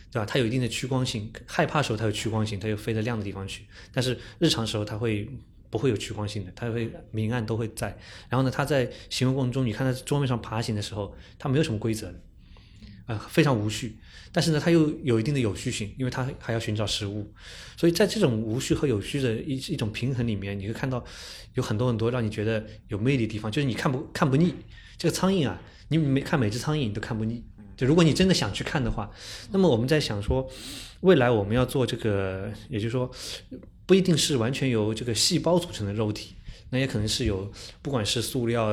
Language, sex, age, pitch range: Chinese, male, 20-39, 105-130 Hz